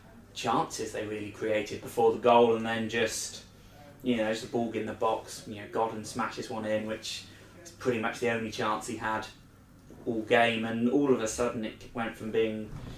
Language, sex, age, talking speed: English, male, 20-39, 205 wpm